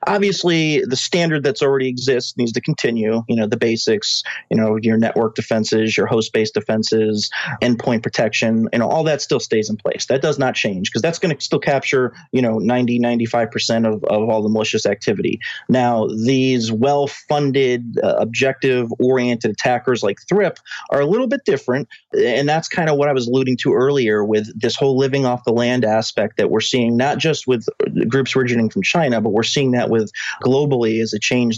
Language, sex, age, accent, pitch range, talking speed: English, male, 30-49, American, 115-140 Hz, 190 wpm